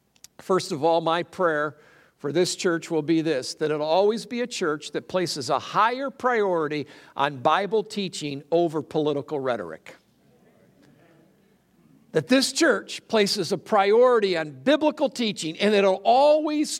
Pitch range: 175-235 Hz